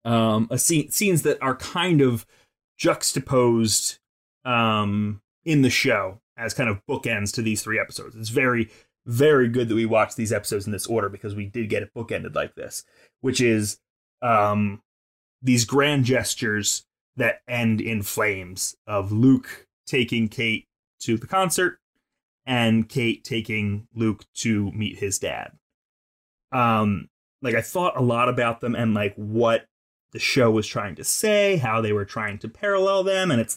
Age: 30-49